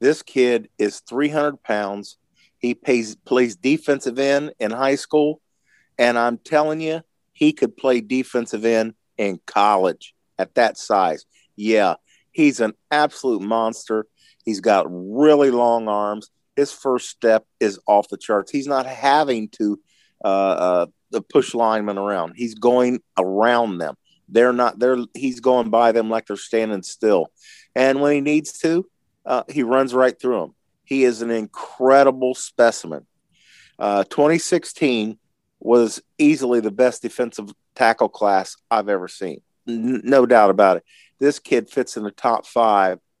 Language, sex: English, male